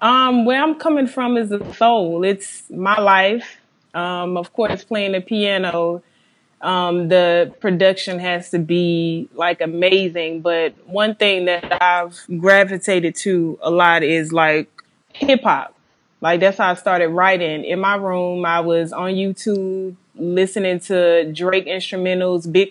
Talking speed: 150 wpm